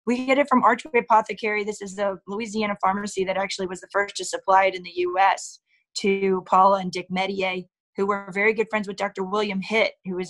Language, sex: English, female